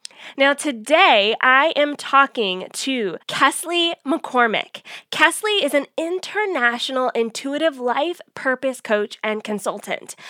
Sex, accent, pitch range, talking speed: female, American, 220-290 Hz, 105 wpm